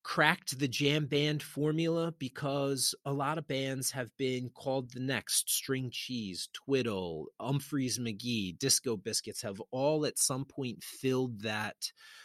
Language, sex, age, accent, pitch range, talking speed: English, male, 30-49, American, 110-135 Hz, 140 wpm